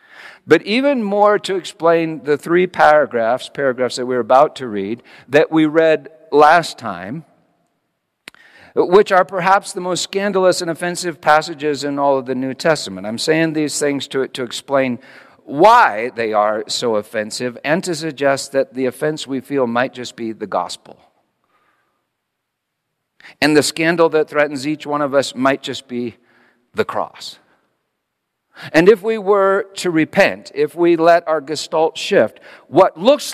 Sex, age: male, 50-69